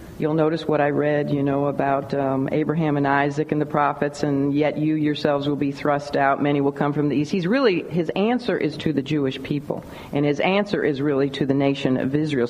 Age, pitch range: 50-69, 145-195 Hz